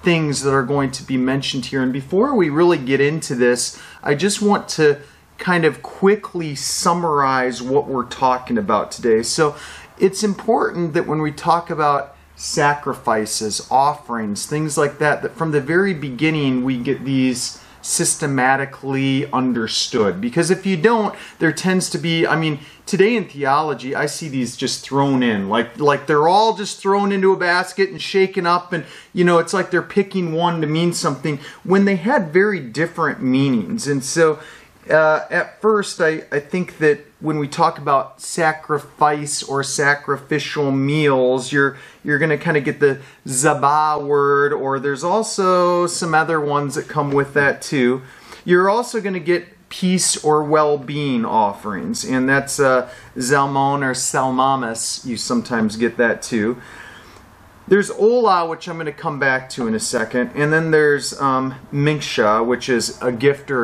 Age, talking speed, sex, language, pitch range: 30-49, 165 wpm, male, English, 135-175 Hz